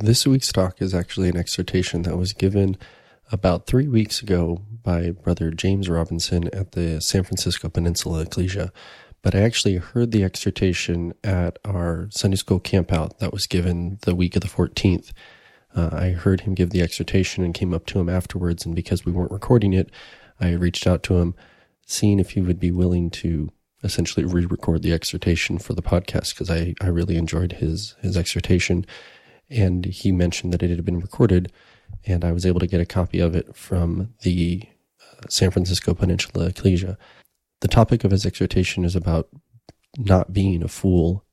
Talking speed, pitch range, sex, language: 180 wpm, 85-100 Hz, male, English